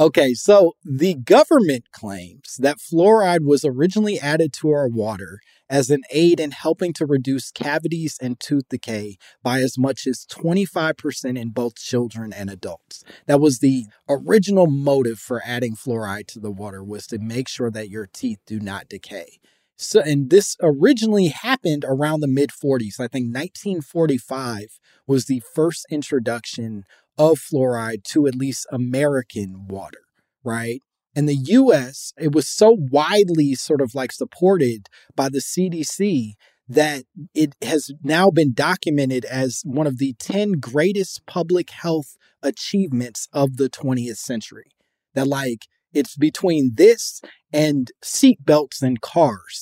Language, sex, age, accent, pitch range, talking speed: English, male, 30-49, American, 125-165 Hz, 145 wpm